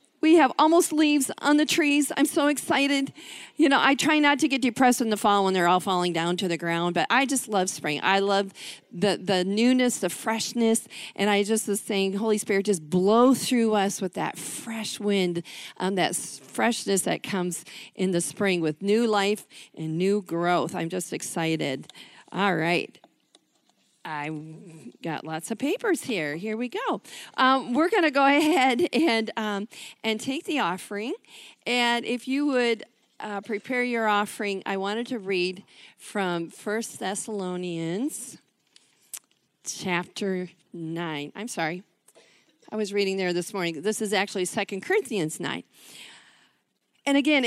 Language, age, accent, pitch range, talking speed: English, 40-59, American, 180-255 Hz, 165 wpm